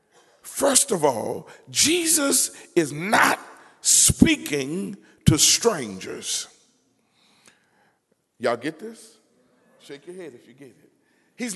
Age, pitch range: 50-69, 210-320 Hz